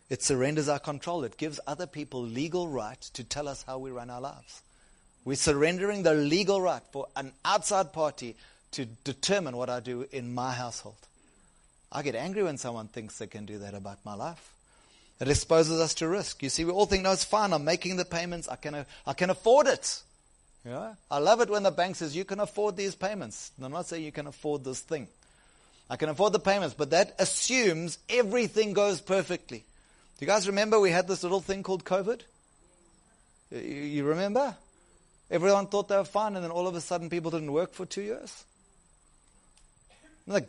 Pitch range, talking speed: 145-200 Hz, 195 wpm